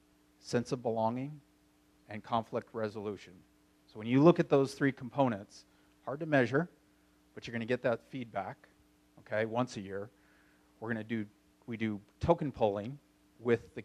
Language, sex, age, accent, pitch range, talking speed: English, male, 40-59, American, 80-125 Hz, 155 wpm